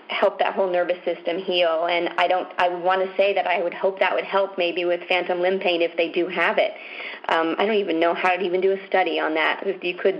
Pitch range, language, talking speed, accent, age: 165-190 Hz, English, 265 wpm, American, 40-59